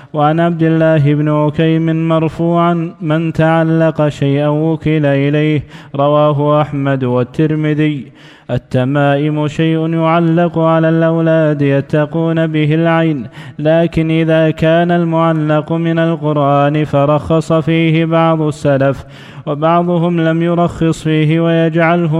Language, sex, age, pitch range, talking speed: Arabic, male, 20-39, 150-165 Hz, 100 wpm